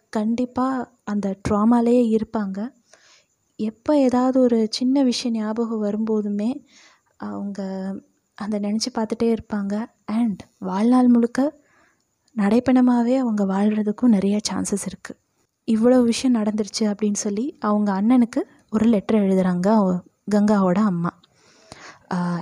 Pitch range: 205-250 Hz